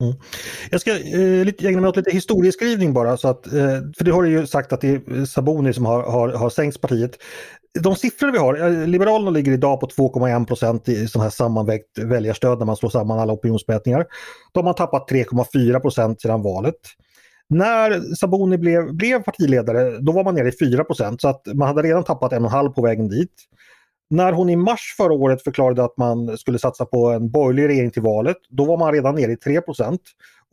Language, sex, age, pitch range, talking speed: Swedish, male, 30-49, 120-170 Hz, 200 wpm